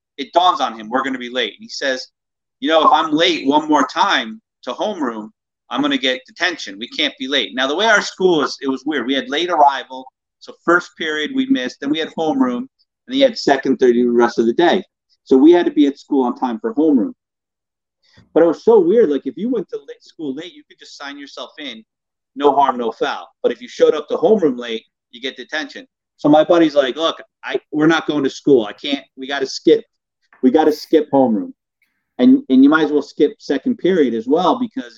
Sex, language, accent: male, English, American